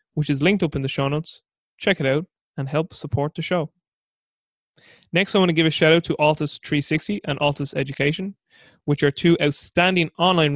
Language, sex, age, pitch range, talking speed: English, male, 20-39, 140-170 Hz, 200 wpm